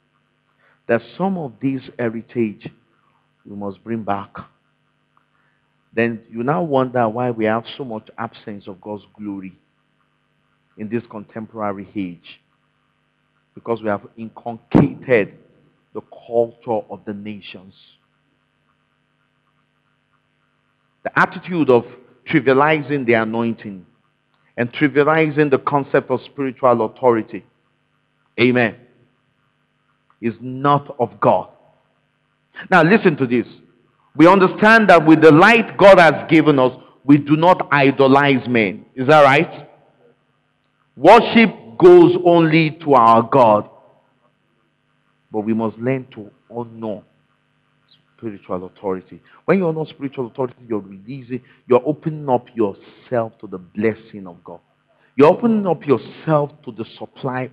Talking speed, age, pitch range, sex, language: 115 wpm, 50-69, 110-145 Hz, male, English